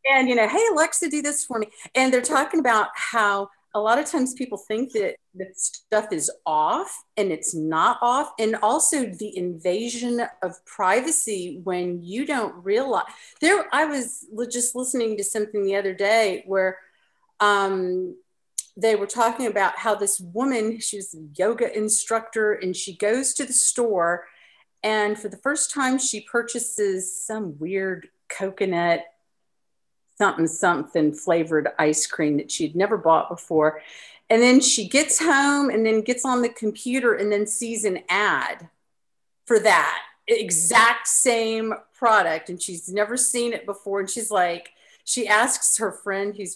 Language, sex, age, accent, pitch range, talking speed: English, female, 50-69, American, 190-255 Hz, 160 wpm